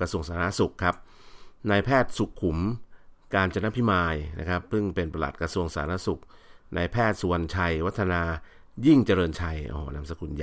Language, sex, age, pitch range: Thai, male, 60-79, 80-100 Hz